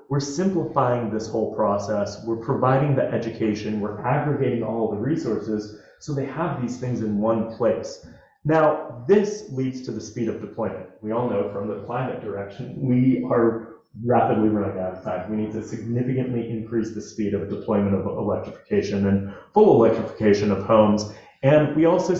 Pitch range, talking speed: 110-140 Hz, 170 wpm